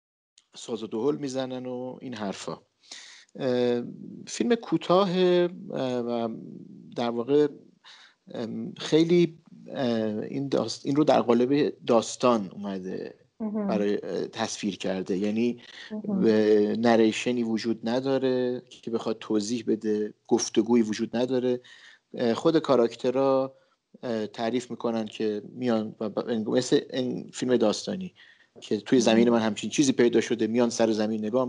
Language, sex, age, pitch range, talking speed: Persian, male, 50-69, 110-140 Hz, 105 wpm